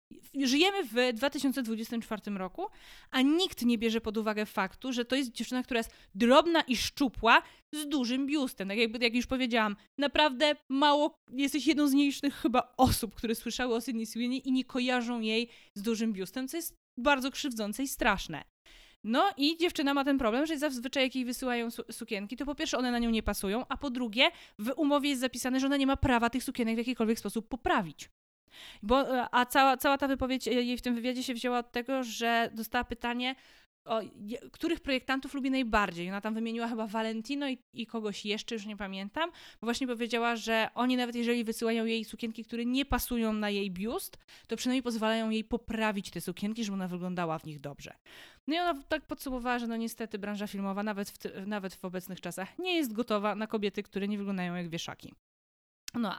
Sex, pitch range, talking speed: female, 220-270 Hz, 190 wpm